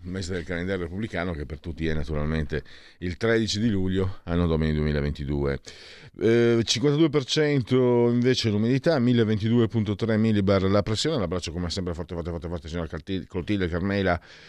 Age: 50-69